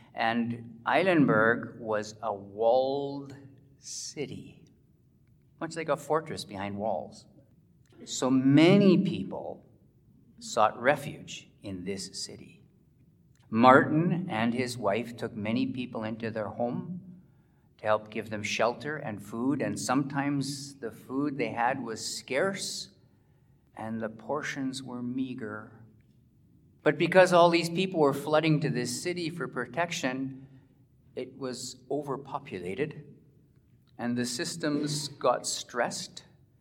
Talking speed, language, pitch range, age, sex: 115 wpm, English, 110-140 Hz, 40-59, male